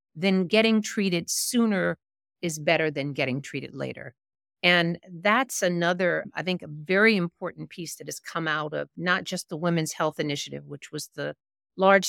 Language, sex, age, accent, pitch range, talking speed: English, female, 50-69, American, 150-205 Hz, 170 wpm